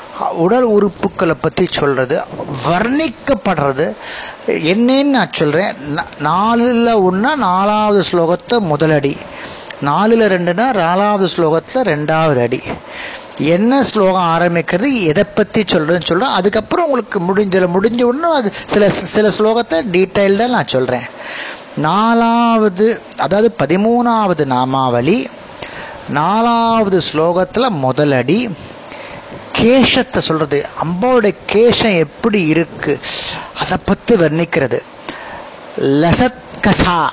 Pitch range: 160-225 Hz